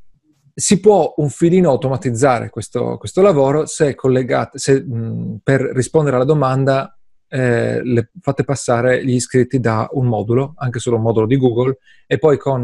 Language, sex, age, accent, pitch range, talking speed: Italian, male, 30-49, native, 115-145 Hz, 160 wpm